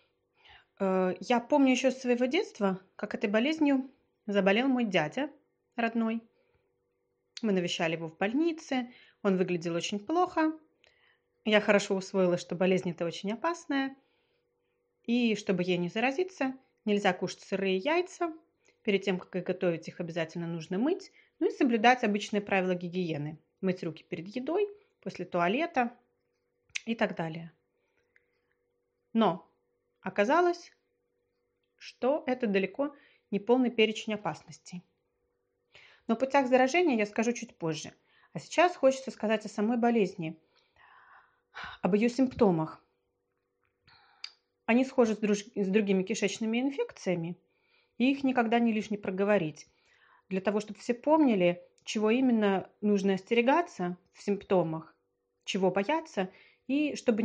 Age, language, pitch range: 30-49, Russian, 185-270 Hz